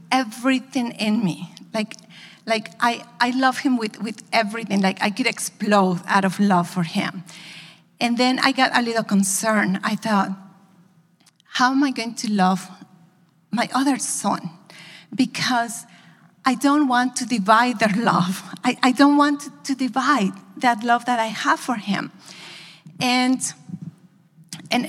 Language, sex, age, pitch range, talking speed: English, female, 40-59, 190-255 Hz, 150 wpm